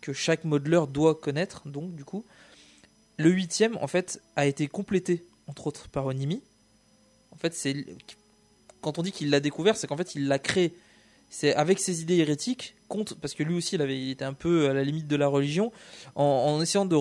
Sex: male